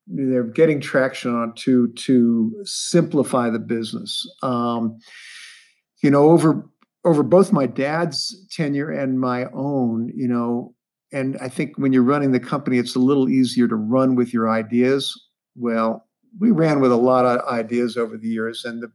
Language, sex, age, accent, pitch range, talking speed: English, male, 50-69, American, 125-165 Hz, 170 wpm